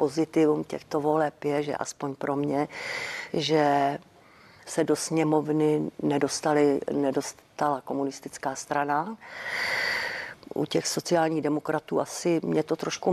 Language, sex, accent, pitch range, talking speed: Czech, female, native, 150-175 Hz, 105 wpm